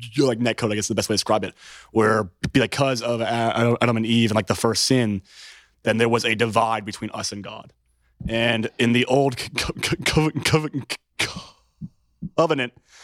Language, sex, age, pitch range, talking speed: English, male, 30-49, 115-130 Hz, 170 wpm